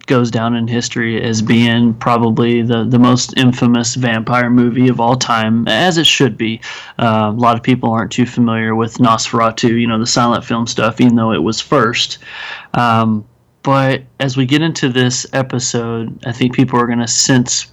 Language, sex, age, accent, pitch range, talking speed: English, male, 30-49, American, 115-125 Hz, 190 wpm